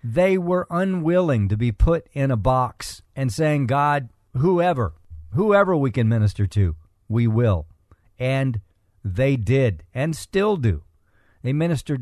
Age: 50-69